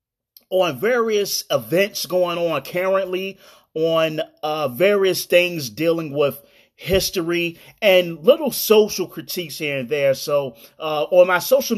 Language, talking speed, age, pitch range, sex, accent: English, 125 wpm, 30-49, 155-195 Hz, male, American